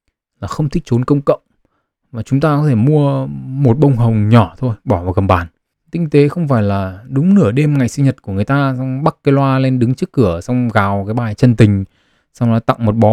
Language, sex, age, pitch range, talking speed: Vietnamese, male, 20-39, 110-140 Hz, 245 wpm